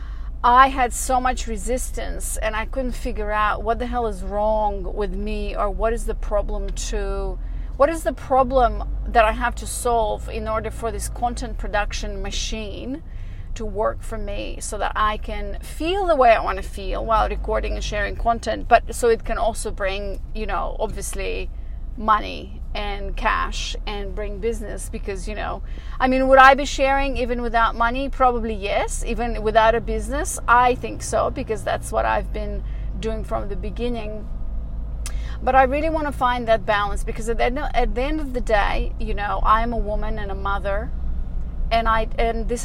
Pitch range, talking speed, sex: 205-250 Hz, 185 wpm, female